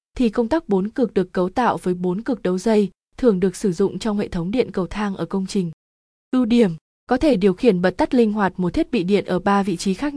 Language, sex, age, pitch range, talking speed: Vietnamese, female, 20-39, 185-235 Hz, 265 wpm